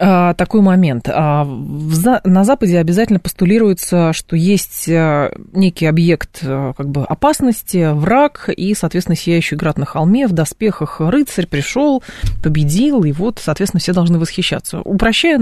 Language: Russian